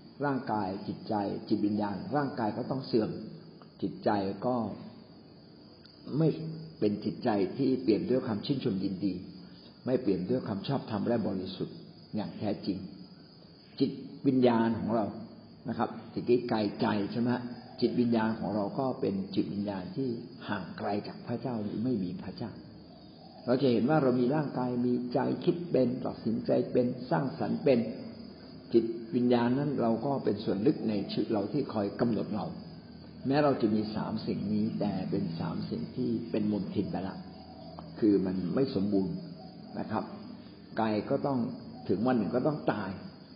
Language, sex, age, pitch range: Thai, male, 60-79, 105-130 Hz